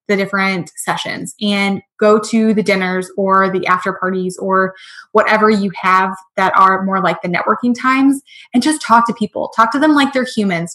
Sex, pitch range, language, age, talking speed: female, 195-225 Hz, English, 20-39, 190 wpm